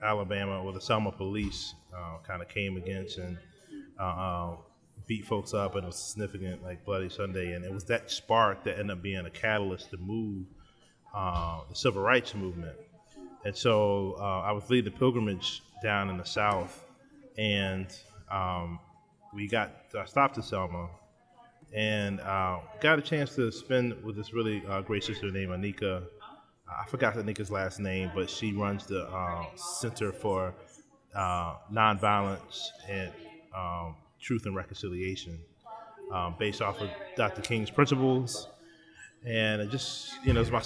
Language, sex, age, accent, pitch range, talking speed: English, male, 20-39, American, 95-120 Hz, 160 wpm